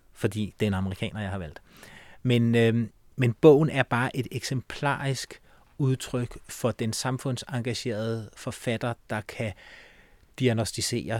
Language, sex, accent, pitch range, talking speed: Danish, male, native, 110-135 Hz, 130 wpm